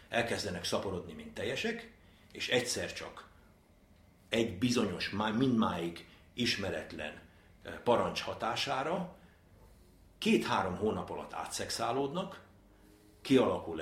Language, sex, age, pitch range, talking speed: Hungarian, male, 60-79, 90-125 Hz, 80 wpm